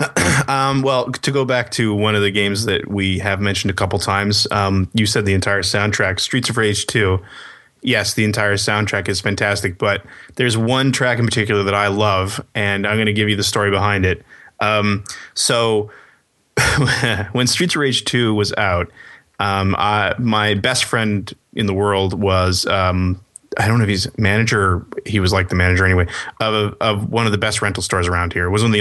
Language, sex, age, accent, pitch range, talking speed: English, male, 20-39, American, 100-115 Hz, 205 wpm